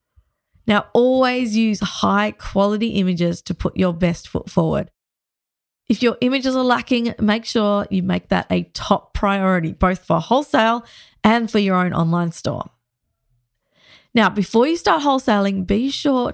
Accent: Australian